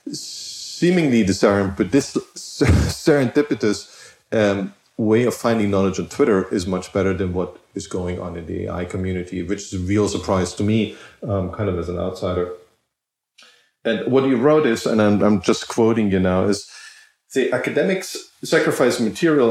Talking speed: 165 wpm